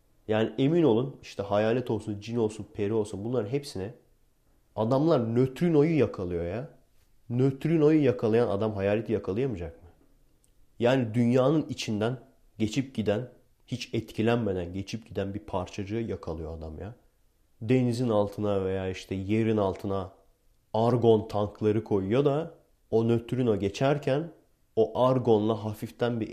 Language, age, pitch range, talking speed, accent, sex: Turkish, 30-49, 100-125 Hz, 120 wpm, native, male